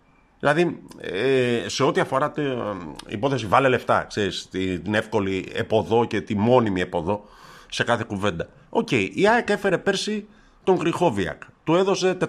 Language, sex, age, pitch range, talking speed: Greek, male, 50-69, 95-155 Hz, 140 wpm